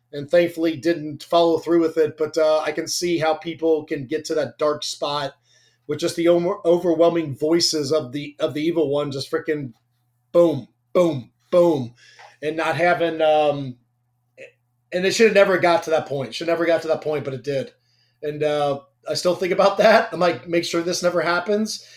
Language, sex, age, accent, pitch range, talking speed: English, male, 30-49, American, 150-170 Hz, 205 wpm